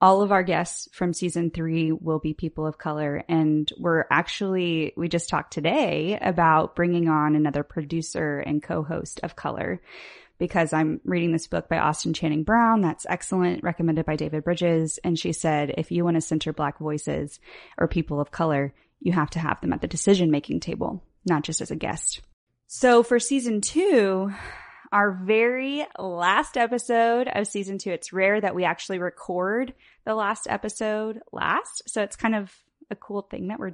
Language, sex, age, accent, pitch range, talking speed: English, female, 20-39, American, 165-210 Hz, 180 wpm